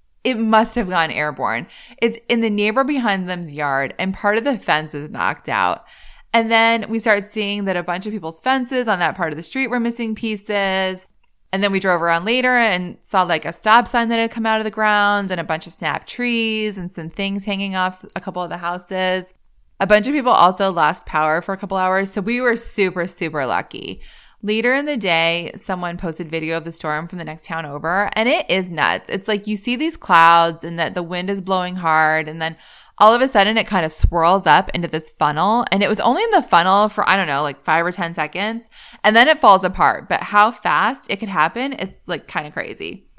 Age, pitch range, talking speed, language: 20-39, 165-220 Hz, 235 wpm, English